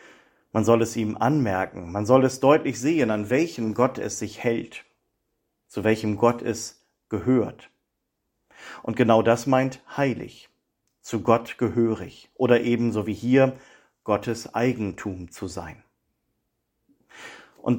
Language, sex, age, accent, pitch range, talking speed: German, male, 40-59, German, 110-130 Hz, 130 wpm